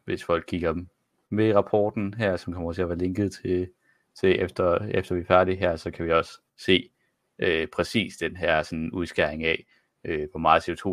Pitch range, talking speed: 80-100 Hz, 200 wpm